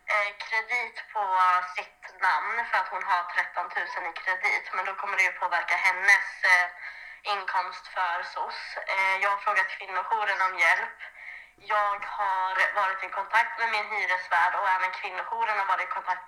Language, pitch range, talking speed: Swedish, 185-230 Hz, 160 wpm